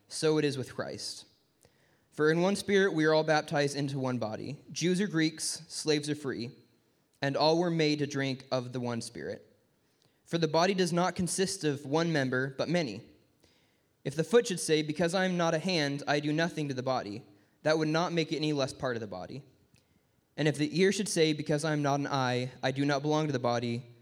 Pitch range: 130-160 Hz